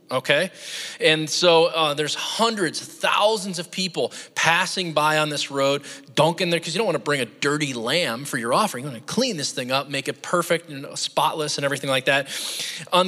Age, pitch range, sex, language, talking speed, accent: 20-39, 140-175 Hz, male, English, 205 wpm, American